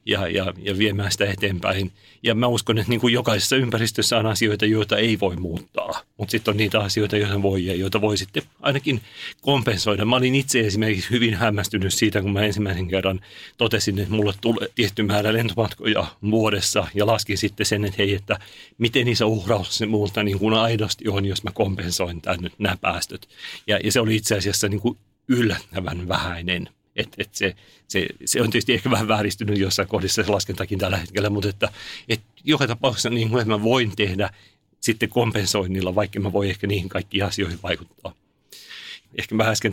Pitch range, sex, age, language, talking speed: 100-110 Hz, male, 40-59, Finnish, 185 wpm